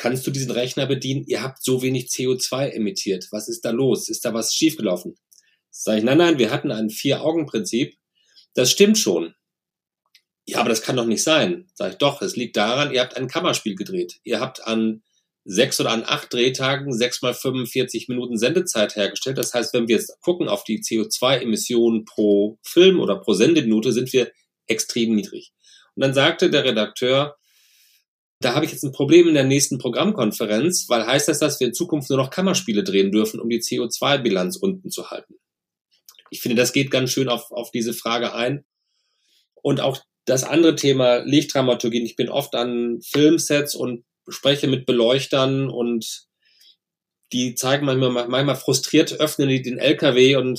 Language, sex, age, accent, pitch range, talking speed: German, male, 40-59, German, 120-145 Hz, 180 wpm